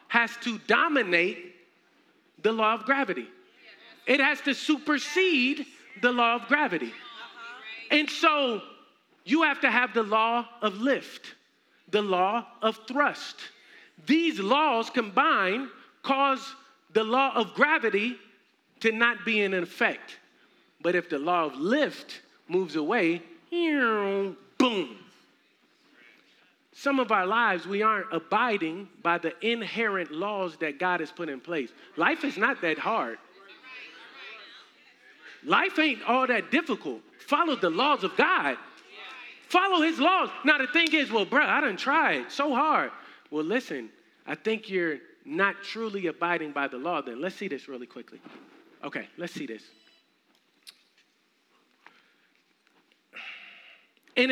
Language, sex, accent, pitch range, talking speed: English, male, American, 195-285 Hz, 135 wpm